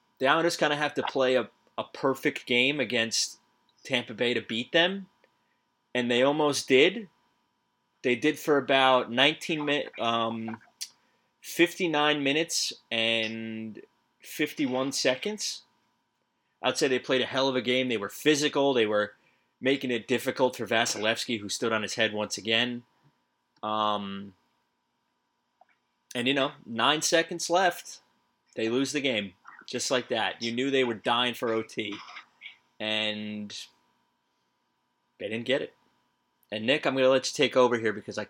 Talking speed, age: 150 wpm, 20-39